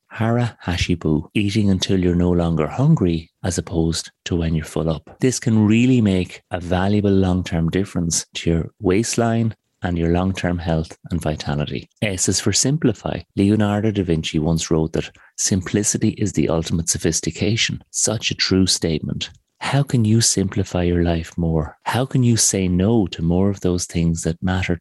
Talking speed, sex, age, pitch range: 175 wpm, male, 30-49, 85-105 Hz